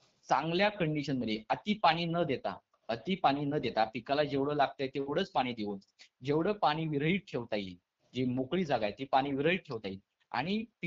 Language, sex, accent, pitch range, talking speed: Hindi, male, native, 120-160 Hz, 85 wpm